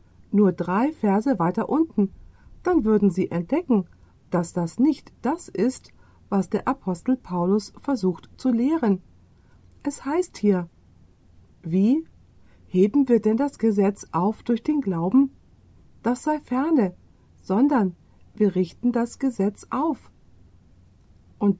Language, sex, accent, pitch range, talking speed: German, female, German, 180-260 Hz, 120 wpm